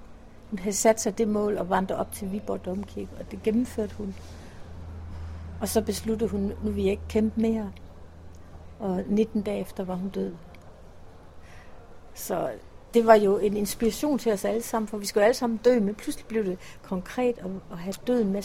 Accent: native